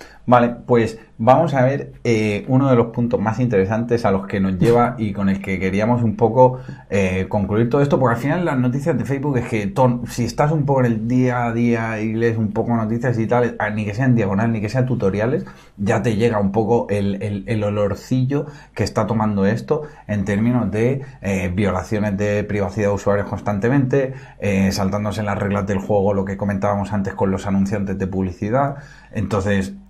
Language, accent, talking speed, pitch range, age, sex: Spanish, Spanish, 200 wpm, 100-120 Hz, 30-49, male